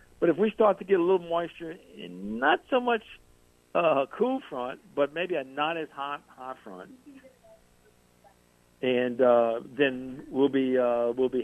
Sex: male